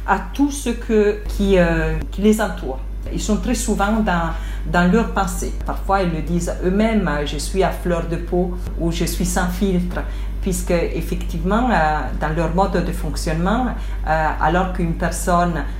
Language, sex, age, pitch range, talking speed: French, female, 50-69, 150-195 Hz, 185 wpm